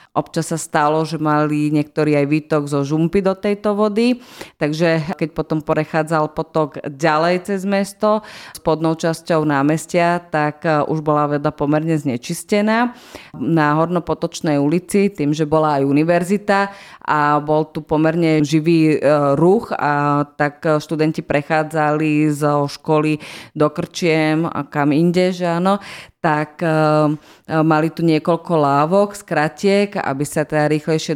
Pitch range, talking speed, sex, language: 150-180 Hz, 130 wpm, female, Slovak